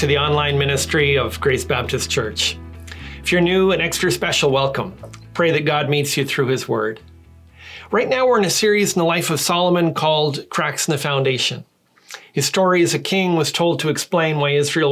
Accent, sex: American, male